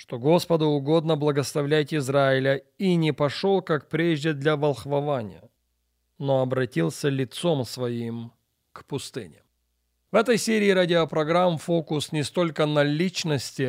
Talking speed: 120 wpm